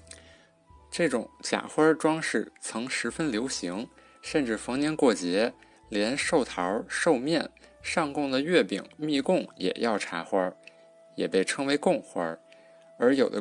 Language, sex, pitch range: Chinese, male, 110-165 Hz